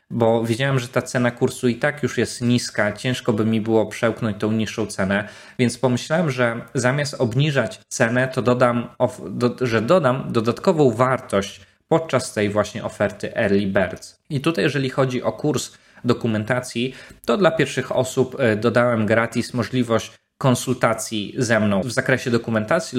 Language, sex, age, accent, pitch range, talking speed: Polish, male, 20-39, native, 110-130 Hz, 145 wpm